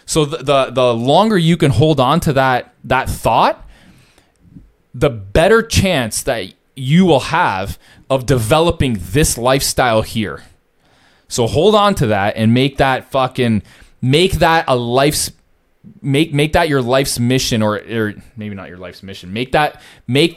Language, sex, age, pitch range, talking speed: English, male, 20-39, 110-155 Hz, 160 wpm